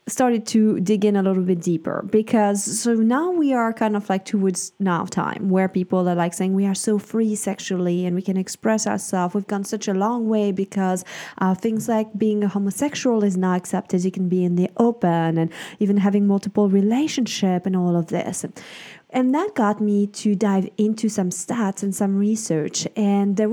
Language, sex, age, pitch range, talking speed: English, female, 20-39, 185-220 Hz, 200 wpm